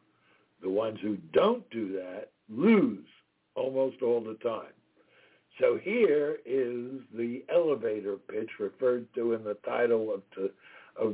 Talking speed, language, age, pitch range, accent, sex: 125 wpm, English, 60-79, 115-145 Hz, American, male